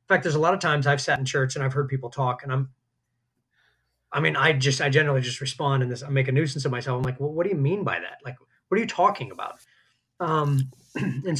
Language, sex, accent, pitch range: English, male, American, 125-150 Hz